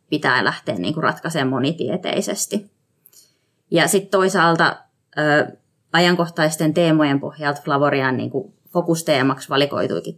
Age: 20-39